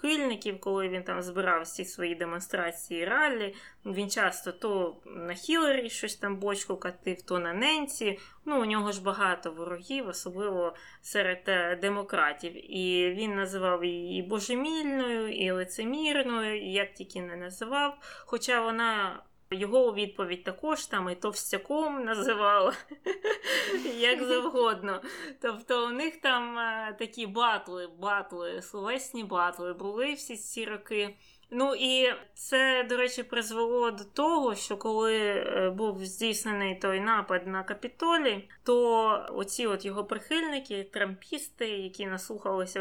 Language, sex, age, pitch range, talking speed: Ukrainian, female, 20-39, 185-245 Hz, 125 wpm